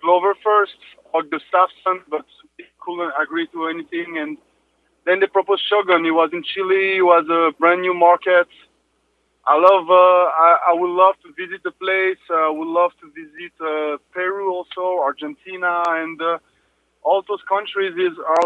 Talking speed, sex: 165 wpm, male